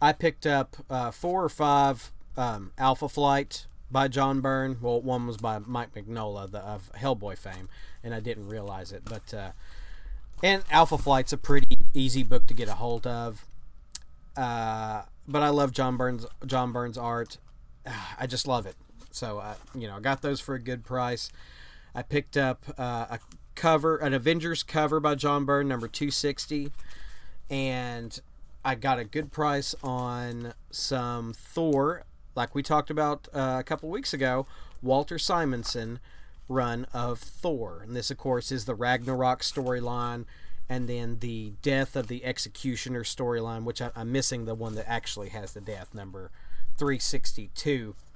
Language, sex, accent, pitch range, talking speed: English, male, American, 115-140 Hz, 165 wpm